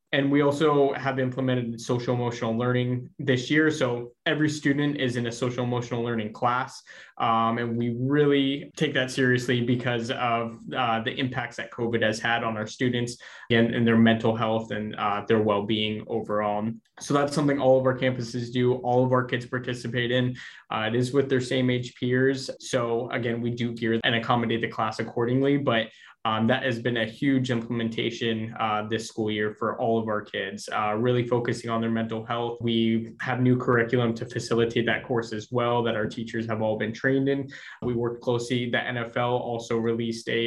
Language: English